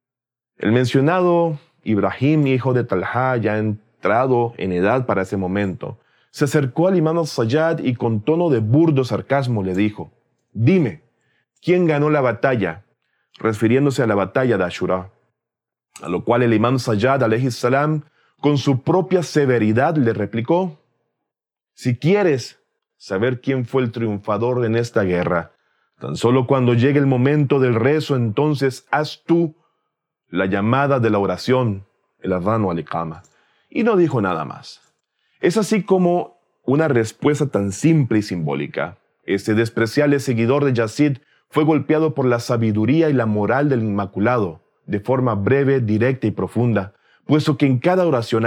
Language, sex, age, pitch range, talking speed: Spanish, male, 30-49, 110-145 Hz, 150 wpm